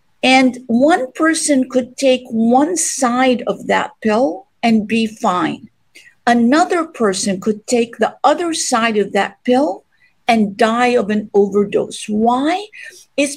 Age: 50-69